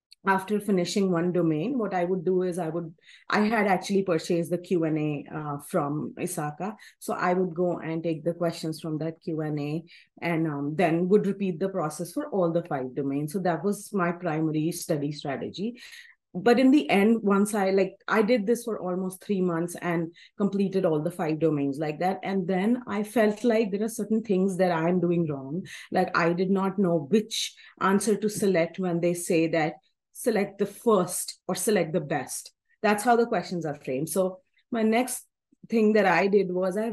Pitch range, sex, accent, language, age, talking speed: 165-205 Hz, female, Indian, English, 30-49, 195 wpm